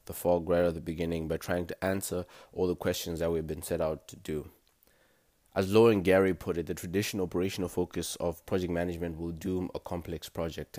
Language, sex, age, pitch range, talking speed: English, male, 20-39, 85-95 Hz, 215 wpm